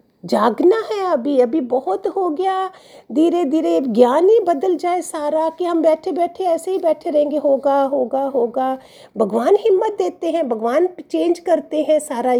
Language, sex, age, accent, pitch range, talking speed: Hindi, female, 50-69, native, 240-325 Hz, 165 wpm